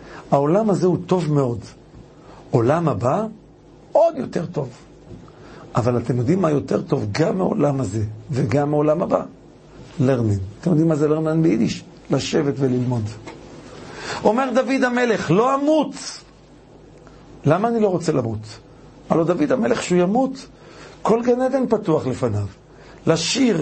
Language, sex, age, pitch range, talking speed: Hebrew, male, 60-79, 150-250 Hz, 130 wpm